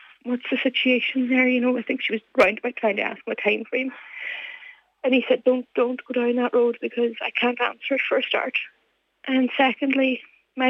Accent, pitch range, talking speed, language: British, 240-285 Hz, 215 wpm, English